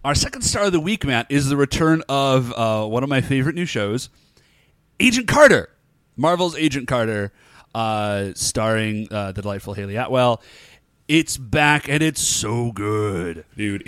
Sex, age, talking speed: male, 30-49, 160 wpm